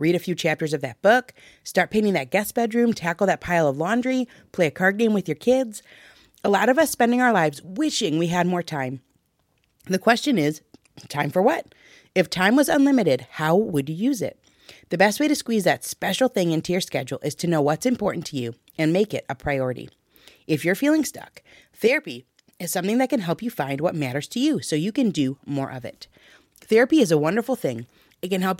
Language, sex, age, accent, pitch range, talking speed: English, female, 30-49, American, 150-230 Hz, 220 wpm